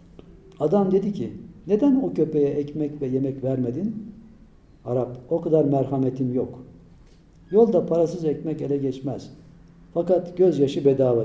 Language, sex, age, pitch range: Turkish, male, 60-79, 130-185 Hz